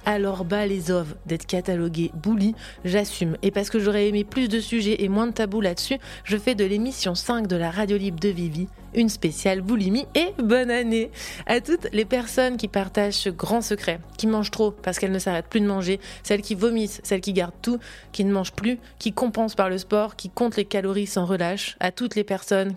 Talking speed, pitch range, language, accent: 220 wpm, 190-220 Hz, French, French